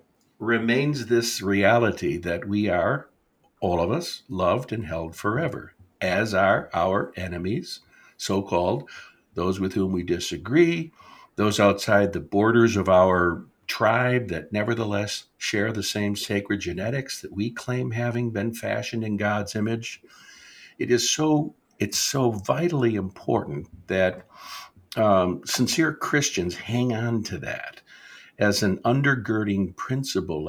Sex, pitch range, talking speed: male, 95-120 Hz, 130 wpm